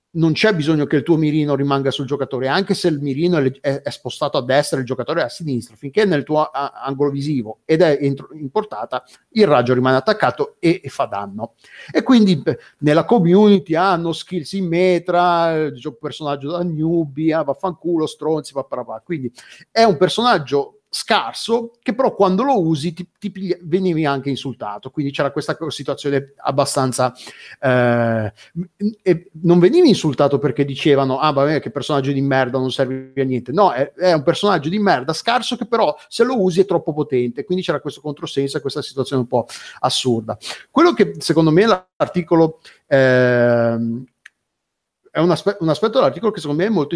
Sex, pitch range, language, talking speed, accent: male, 140-185 Hz, Italian, 170 wpm, native